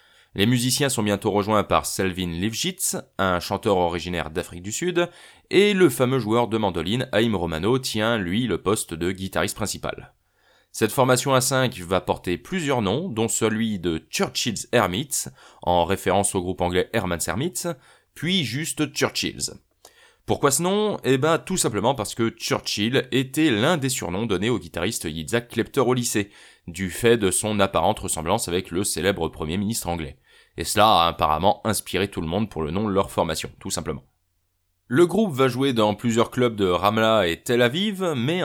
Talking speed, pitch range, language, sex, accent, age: 180 wpm, 95-130 Hz, French, male, French, 20-39